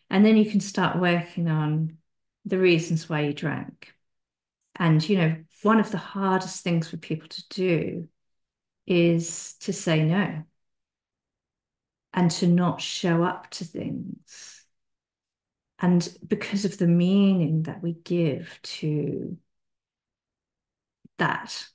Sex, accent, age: female, British, 40-59